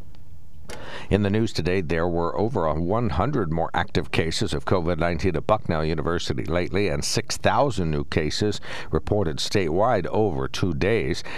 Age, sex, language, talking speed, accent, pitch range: 60-79, male, English, 135 wpm, American, 75-95 Hz